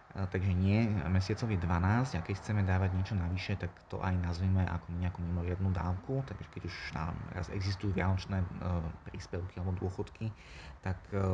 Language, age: Slovak, 20-39